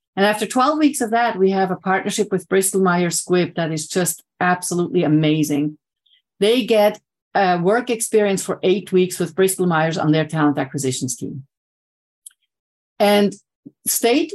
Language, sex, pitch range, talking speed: English, female, 155-210 Hz, 155 wpm